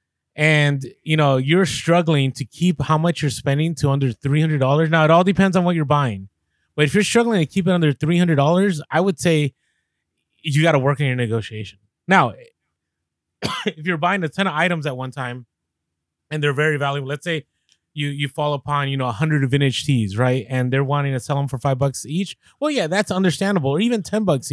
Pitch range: 130-170 Hz